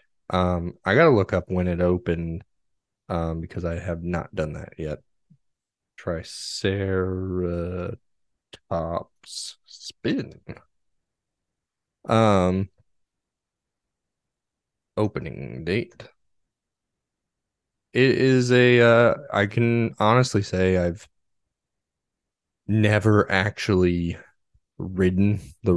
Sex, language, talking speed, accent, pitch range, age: male, English, 85 wpm, American, 85-100 Hz, 20-39